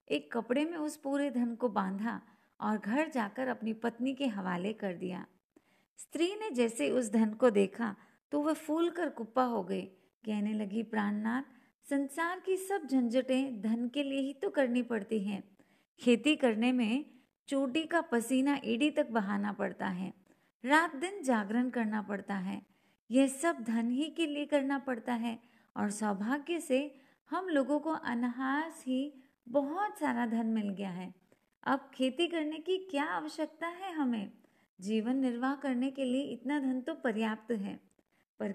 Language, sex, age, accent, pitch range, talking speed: Hindi, female, 30-49, native, 225-285 Hz, 125 wpm